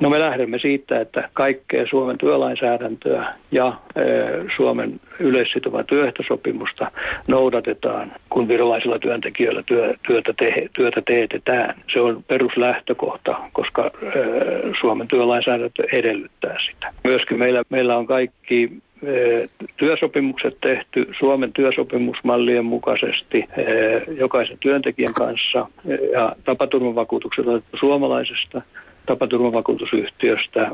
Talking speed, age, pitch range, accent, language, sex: 85 wpm, 60-79, 120-140 Hz, native, Finnish, male